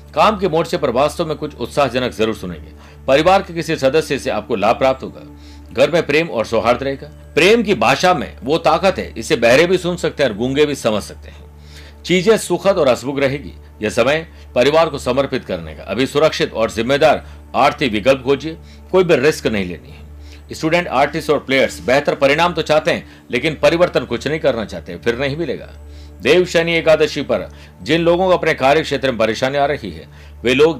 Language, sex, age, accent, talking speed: Hindi, male, 60-79, native, 200 wpm